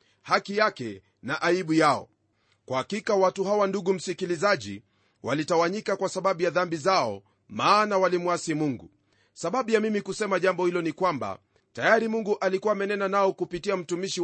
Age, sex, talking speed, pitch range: 40-59, male, 150 wpm, 160-195 Hz